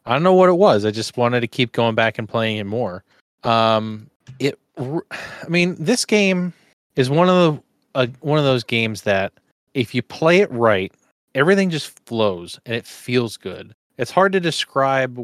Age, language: 30-49, English